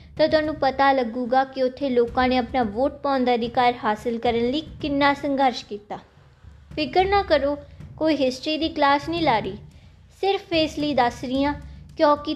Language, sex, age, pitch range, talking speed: Punjabi, female, 20-39, 250-315 Hz, 160 wpm